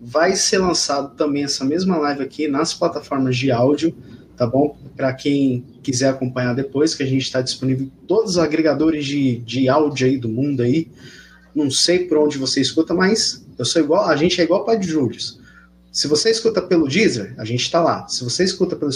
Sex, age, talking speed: male, 20-39, 205 wpm